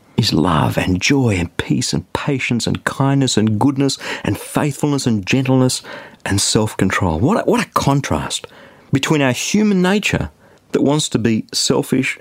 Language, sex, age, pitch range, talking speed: English, male, 50-69, 110-140 Hz, 155 wpm